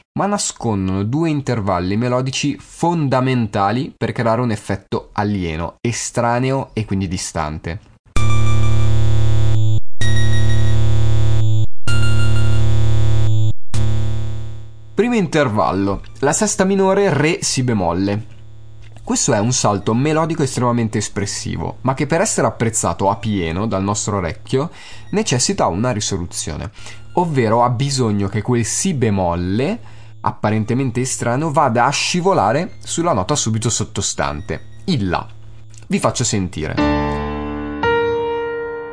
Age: 20-39